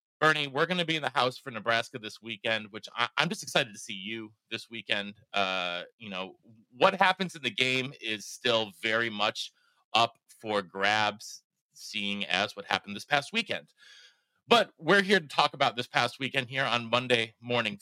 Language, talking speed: English, 190 wpm